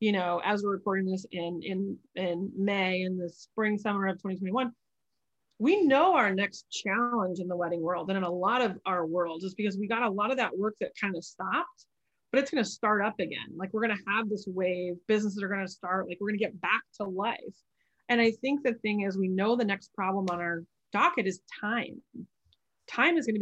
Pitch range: 190-225 Hz